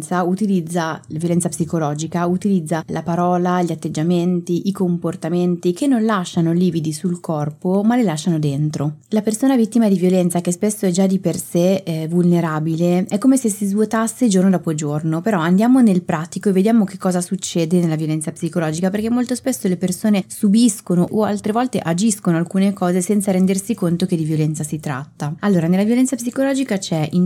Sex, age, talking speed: female, 20-39, 175 wpm